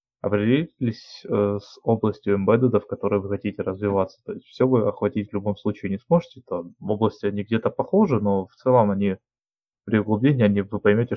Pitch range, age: 100-115 Hz, 20-39